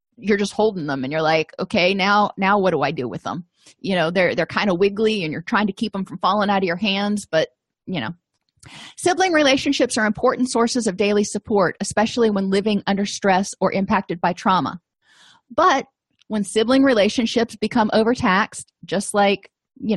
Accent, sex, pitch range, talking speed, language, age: American, female, 185-235 Hz, 190 wpm, English, 30-49